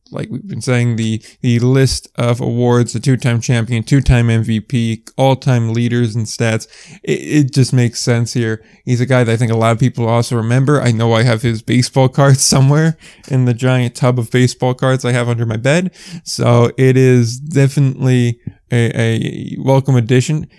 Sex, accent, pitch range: male, American, 115-135 Hz